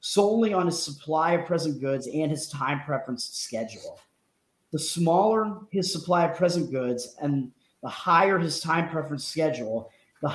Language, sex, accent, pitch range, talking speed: English, male, American, 130-170 Hz, 155 wpm